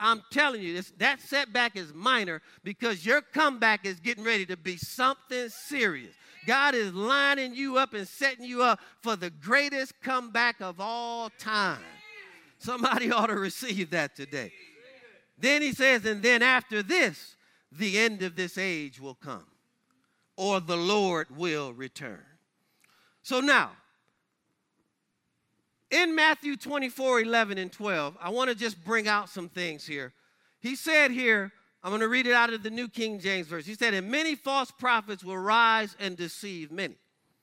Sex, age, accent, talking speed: male, 50-69, American, 160 wpm